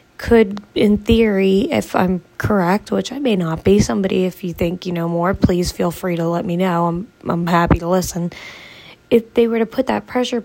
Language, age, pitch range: English, 20-39, 185-230 Hz